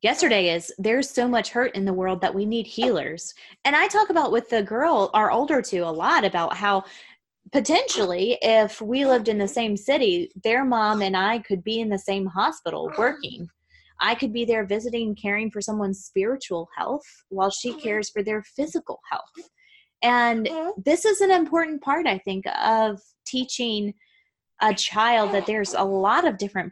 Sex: female